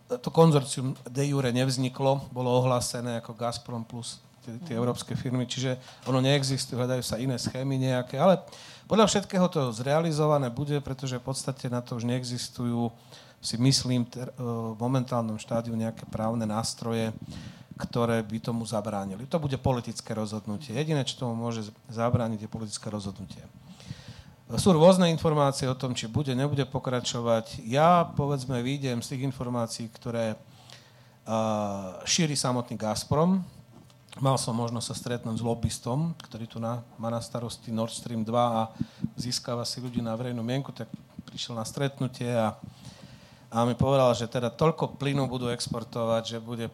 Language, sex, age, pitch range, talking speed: Slovak, male, 40-59, 115-135 Hz, 155 wpm